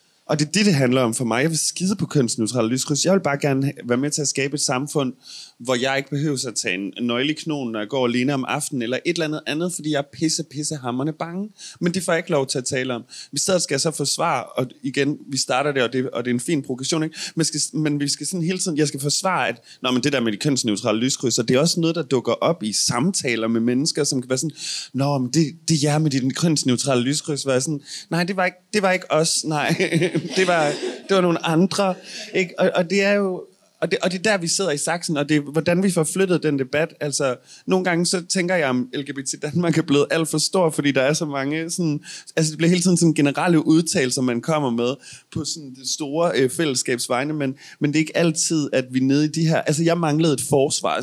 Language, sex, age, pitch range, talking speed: Danish, male, 30-49, 130-165 Hz, 255 wpm